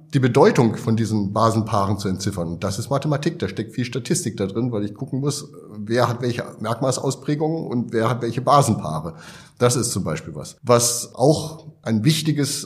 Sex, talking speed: male, 185 wpm